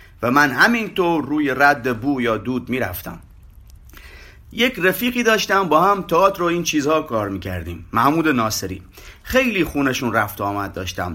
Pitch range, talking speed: 120-165 Hz, 145 wpm